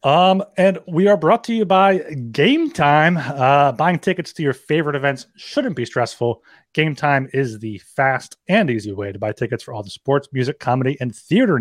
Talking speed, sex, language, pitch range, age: 200 wpm, male, English, 120-160 Hz, 30-49